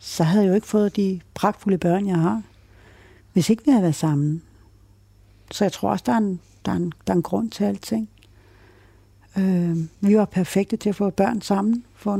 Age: 60-79